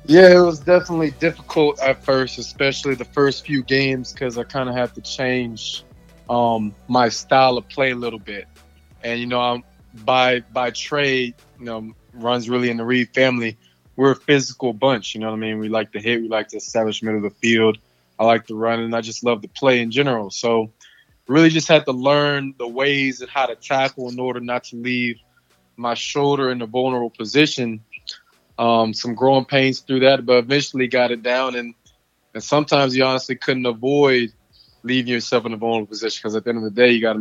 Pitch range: 115-135 Hz